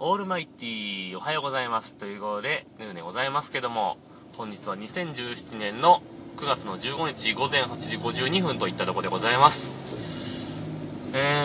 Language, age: Japanese, 20-39